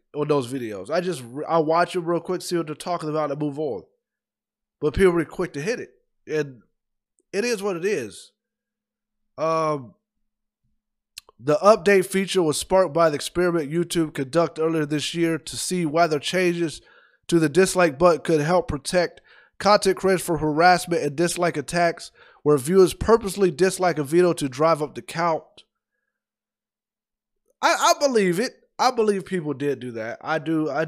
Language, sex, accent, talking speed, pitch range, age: English, male, American, 170 wpm, 155-190 Hz, 20-39